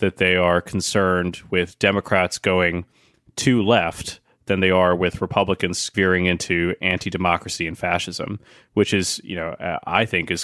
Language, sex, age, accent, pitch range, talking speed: English, male, 30-49, American, 90-105 Hz, 150 wpm